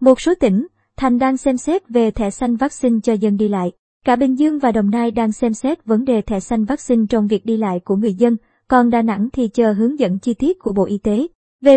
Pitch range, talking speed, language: 215-270 Hz, 255 wpm, Vietnamese